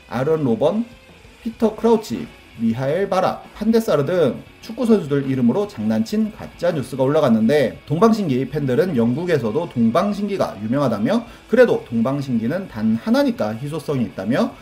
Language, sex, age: Korean, male, 30-49